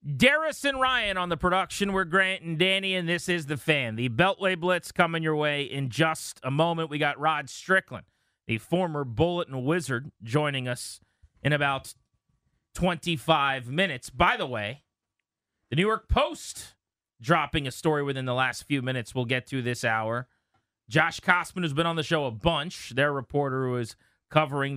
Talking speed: 175 wpm